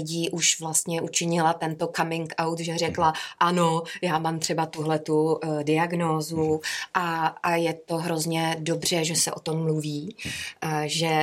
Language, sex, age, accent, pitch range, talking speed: Czech, female, 20-39, native, 150-165 Hz, 155 wpm